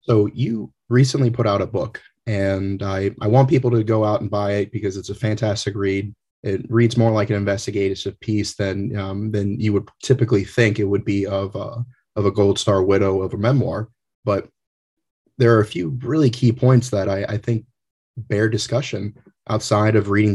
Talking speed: 200 wpm